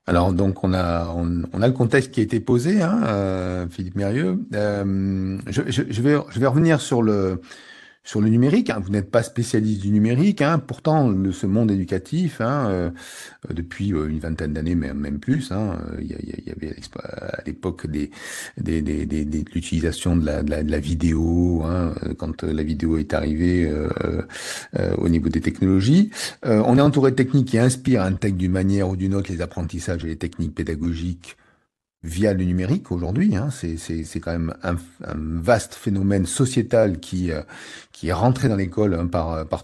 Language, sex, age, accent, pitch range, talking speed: French, male, 50-69, French, 85-120 Hz, 200 wpm